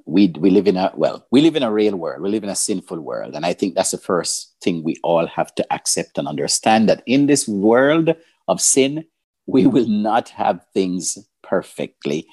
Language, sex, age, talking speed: English, male, 50-69, 215 wpm